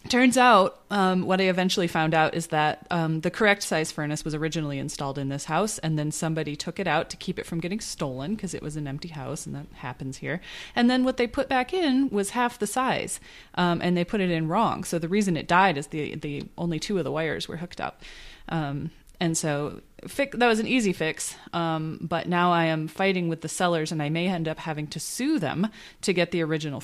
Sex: female